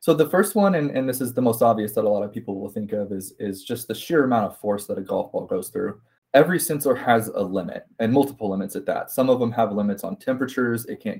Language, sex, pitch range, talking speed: English, male, 100-130 Hz, 280 wpm